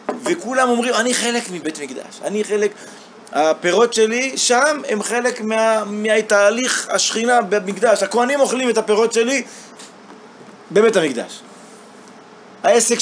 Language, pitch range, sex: Hebrew, 155-225 Hz, male